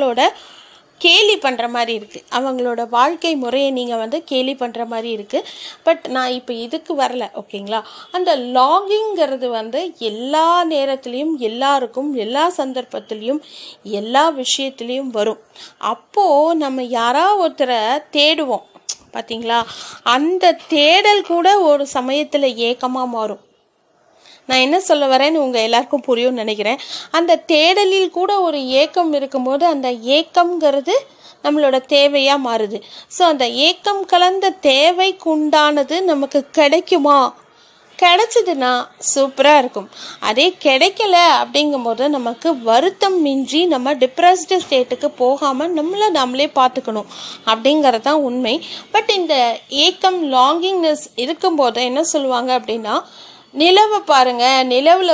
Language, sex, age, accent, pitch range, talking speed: Tamil, female, 30-49, native, 255-335 Hz, 85 wpm